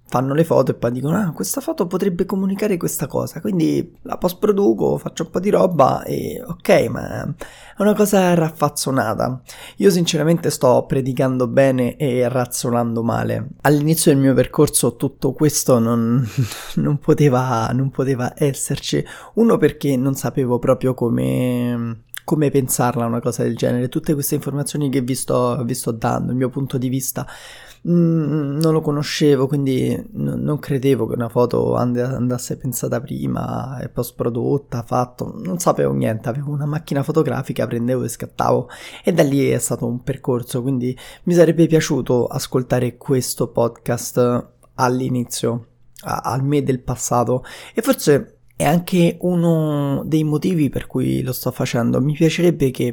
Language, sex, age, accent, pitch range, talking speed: Italian, male, 20-39, native, 125-150 Hz, 150 wpm